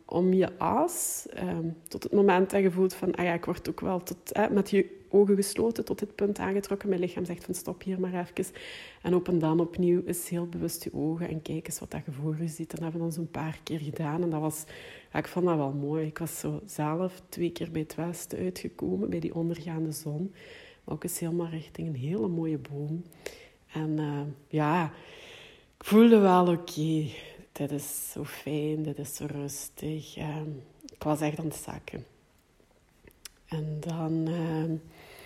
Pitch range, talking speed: 155-180 Hz, 200 wpm